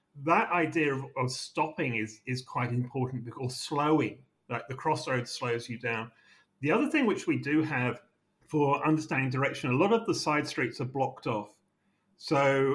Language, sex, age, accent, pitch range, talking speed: English, male, 40-59, British, 125-155 Hz, 170 wpm